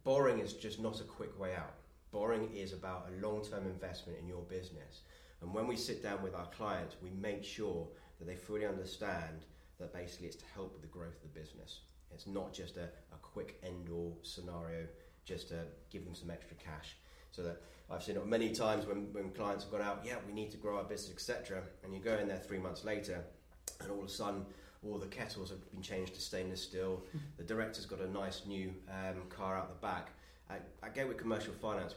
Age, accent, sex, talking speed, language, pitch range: 30-49, British, male, 220 wpm, English, 85-100 Hz